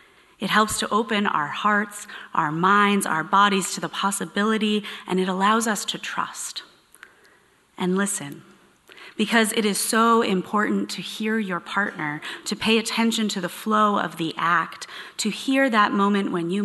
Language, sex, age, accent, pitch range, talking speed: English, female, 30-49, American, 175-215 Hz, 160 wpm